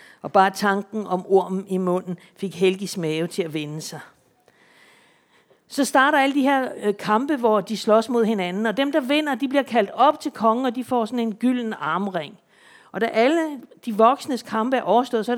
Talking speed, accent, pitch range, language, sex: 205 wpm, native, 210-260 Hz, Danish, female